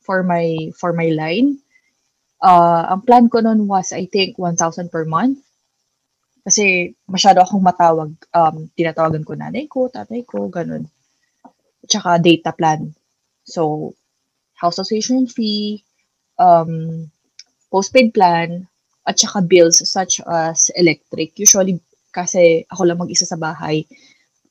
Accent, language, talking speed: Filipino, English, 125 wpm